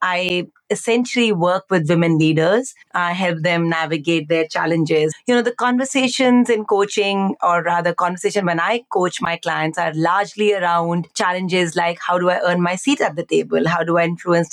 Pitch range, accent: 170-220 Hz, Indian